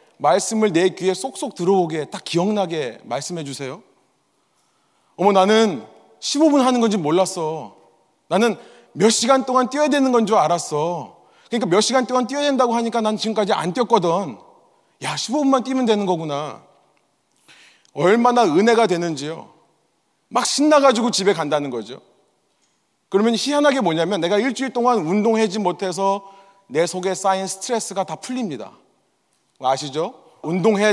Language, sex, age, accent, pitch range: Korean, male, 30-49, native, 180-255 Hz